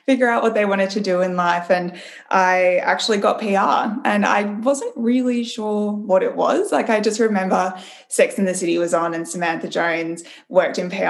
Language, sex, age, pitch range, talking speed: English, female, 20-39, 180-245 Hz, 205 wpm